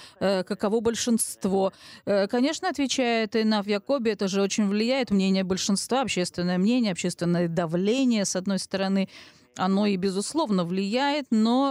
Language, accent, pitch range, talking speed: Russian, native, 185-230 Hz, 125 wpm